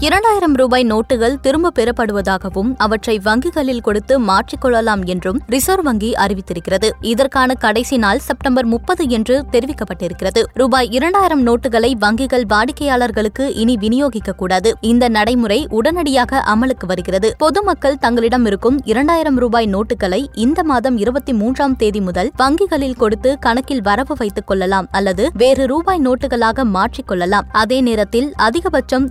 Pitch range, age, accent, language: 215-270 Hz, 20-39, native, Tamil